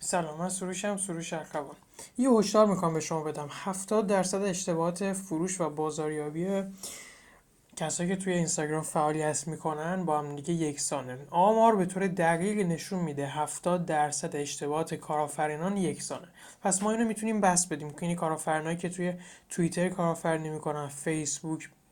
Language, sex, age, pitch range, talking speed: Persian, male, 20-39, 155-190 Hz, 140 wpm